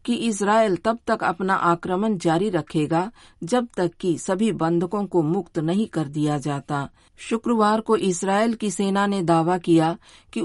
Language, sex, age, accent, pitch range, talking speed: Hindi, female, 50-69, native, 160-195 Hz, 160 wpm